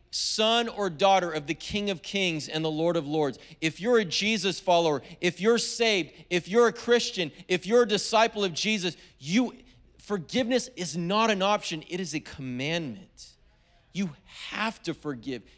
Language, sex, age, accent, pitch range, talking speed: English, male, 40-59, American, 160-225 Hz, 175 wpm